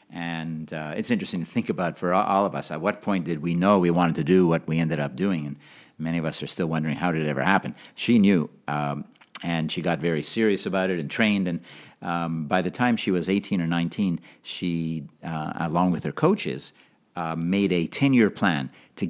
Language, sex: English, male